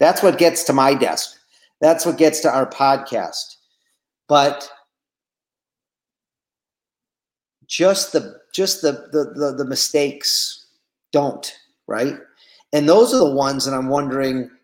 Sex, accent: male, American